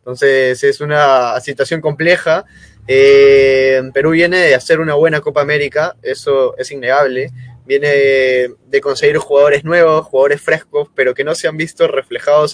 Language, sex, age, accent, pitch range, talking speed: Spanish, male, 20-39, Argentinian, 135-175 Hz, 150 wpm